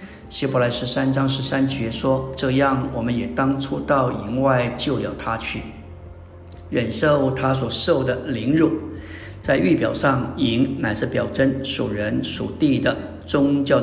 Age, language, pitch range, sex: 50-69, Chinese, 120-140 Hz, male